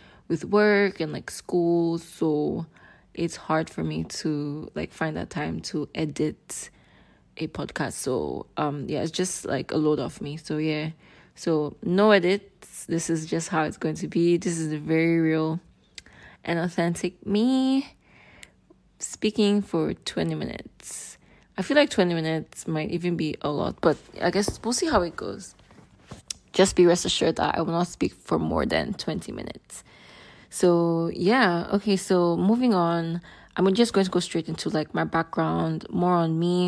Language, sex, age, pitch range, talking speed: English, female, 20-39, 160-190 Hz, 170 wpm